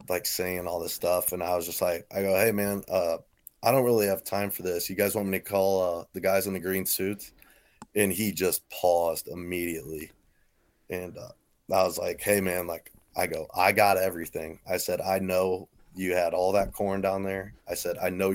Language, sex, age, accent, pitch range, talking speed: English, male, 30-49, American, 90-105 Hz, 220 wpm